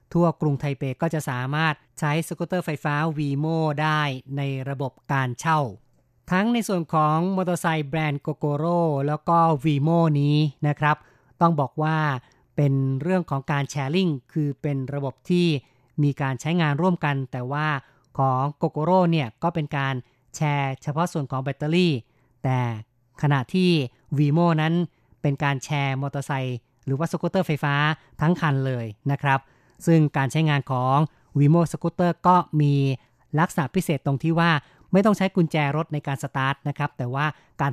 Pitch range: 135-165 Hz